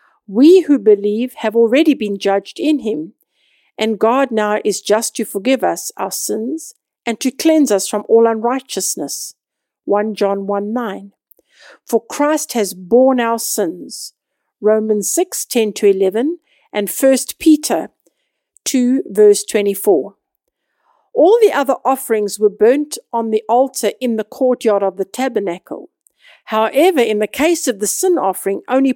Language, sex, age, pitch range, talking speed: English, female, 50-69, 210-280 Hz, 150 wpm